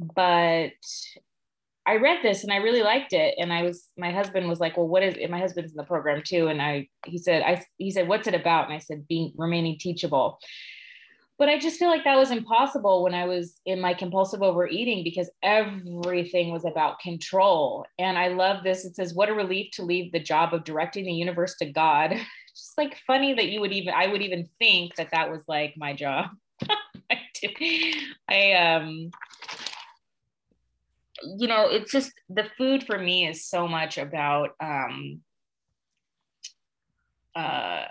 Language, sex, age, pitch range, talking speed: English, female, 20-39, 160-200 Hz, 180 wpm